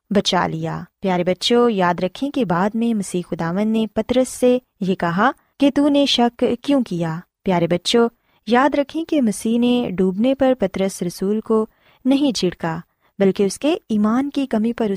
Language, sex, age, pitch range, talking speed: Urdu, female, 20-39, 185-255 Hz, 170 wpm